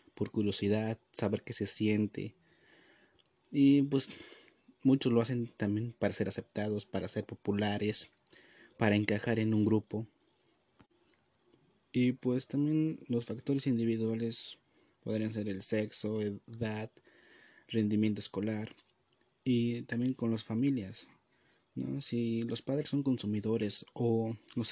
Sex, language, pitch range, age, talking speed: male, Spanish, 105-125 Hz, 30-49, 120 wpm